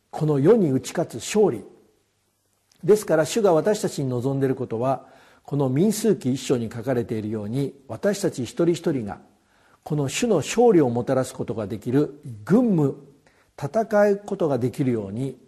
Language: Japanese